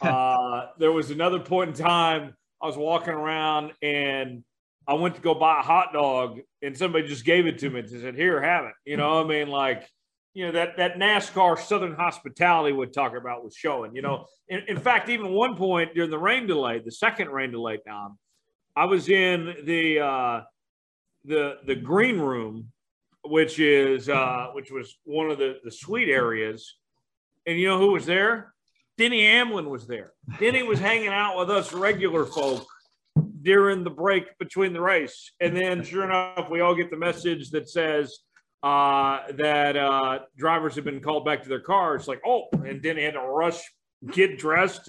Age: 40-59